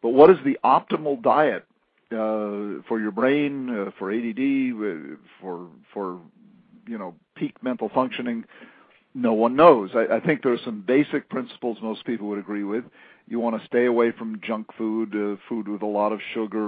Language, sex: English, male